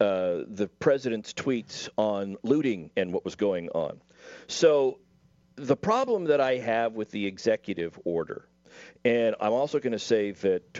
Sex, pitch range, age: male, 105-160 Hz, 50-69